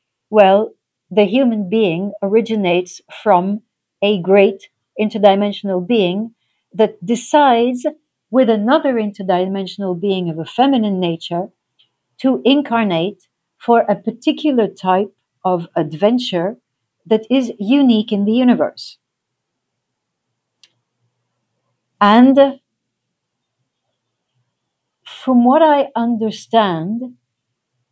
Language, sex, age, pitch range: English, female, 50-69, 185-240 Hz